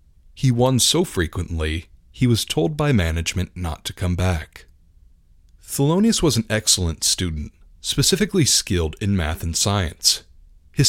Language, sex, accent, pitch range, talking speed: English, male, American, 80-125 Hz, 140 wpm